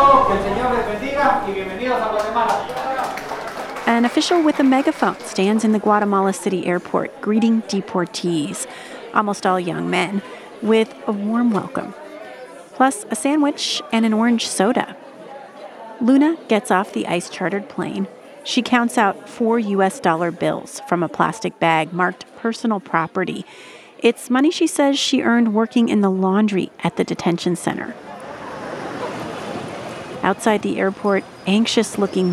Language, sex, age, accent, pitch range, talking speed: English, female, 30-49, American, 185-235 Hz, 125 wpm